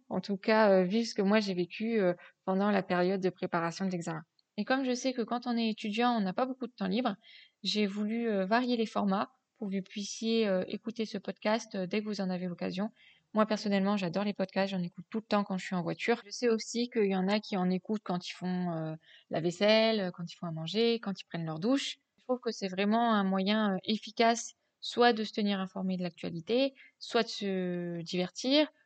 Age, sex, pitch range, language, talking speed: 20-39, female, 185-230 Hz, French, 225 wpm